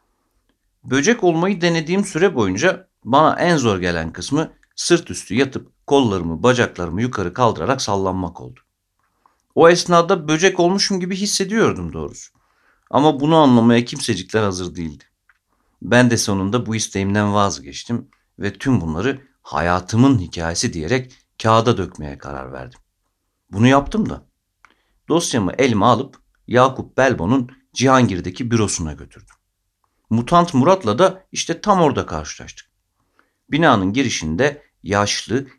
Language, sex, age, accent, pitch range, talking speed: Turkish, male, 60-79, native, 90-145 Hz, 115 wpm